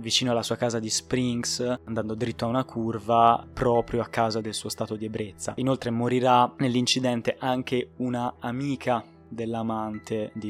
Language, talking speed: Italian, 155 wpm